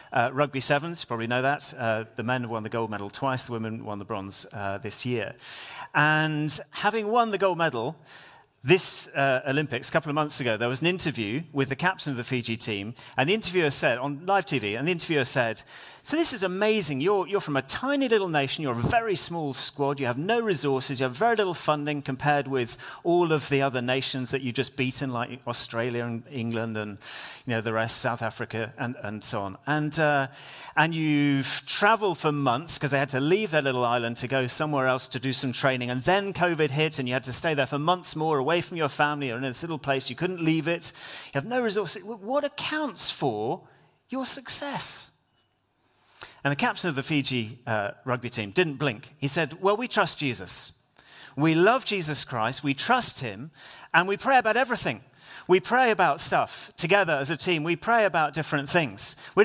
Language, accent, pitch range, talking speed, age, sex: English, British, 125-175 Hz, 210 wpm, 40-59, male